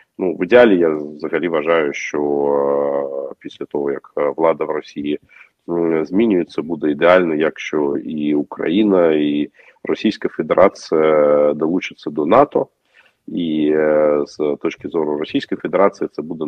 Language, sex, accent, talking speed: Ukrainian, male, native, 120 wpm